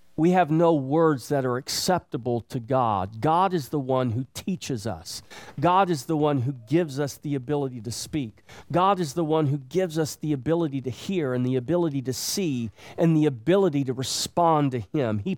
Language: English